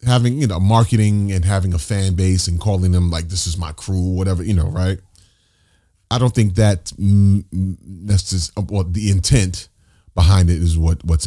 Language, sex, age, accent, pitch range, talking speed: English, male, 30-49, American, 85-100 Hz, 190 wpm